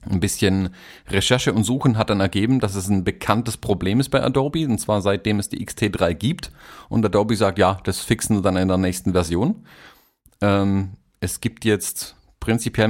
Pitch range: 95-120 Hz